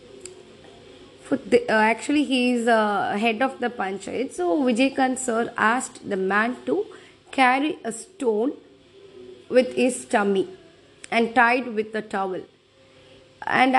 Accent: native